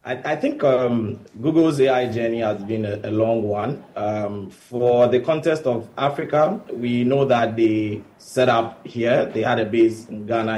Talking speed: 180 wpm